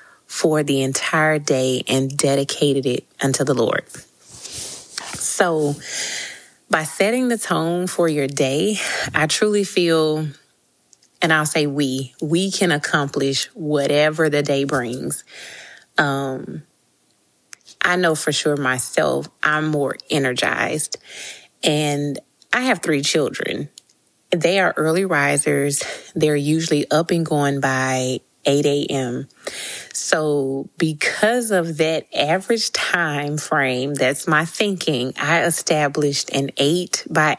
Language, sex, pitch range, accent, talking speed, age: English, female, 140-165 Hz, American, 115 wpm, 30-49